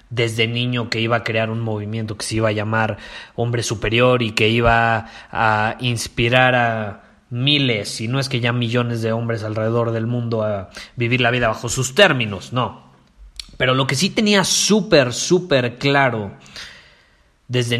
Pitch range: 110-135 Hz